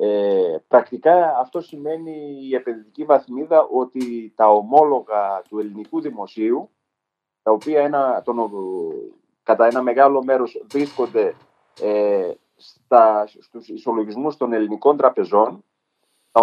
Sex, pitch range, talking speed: male, 125-190 Hz, 90 wpm